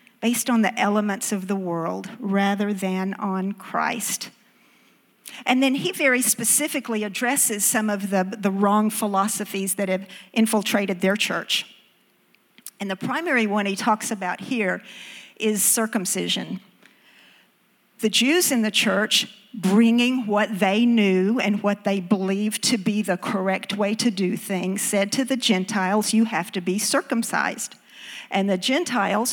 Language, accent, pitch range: English, American, 200-235 Hz